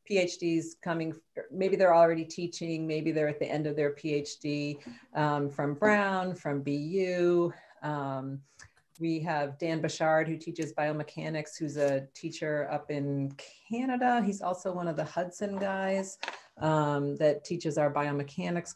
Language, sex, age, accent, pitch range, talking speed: English, female, 40-59, American, 150-185 Hz, 145 wpm